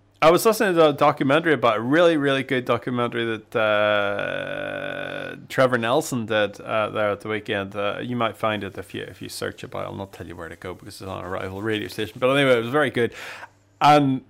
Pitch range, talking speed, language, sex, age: 105-135 Hz, 235 wpm, English, male, 30-49